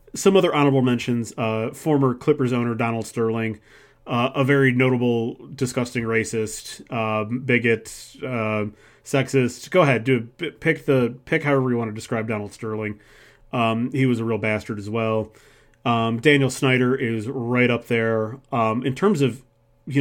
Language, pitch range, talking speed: English, 110-130 Hz, 160 wpm